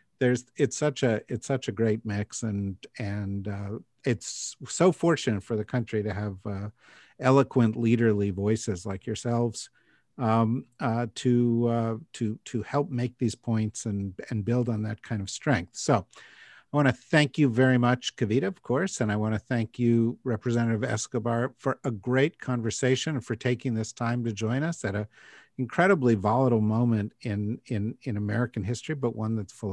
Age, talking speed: 50-69, 180 wpm